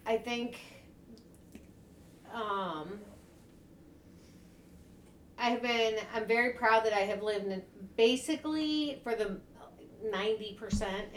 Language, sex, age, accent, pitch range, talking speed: English, female, 40-59, American, 180-220 Hz, 90 wpm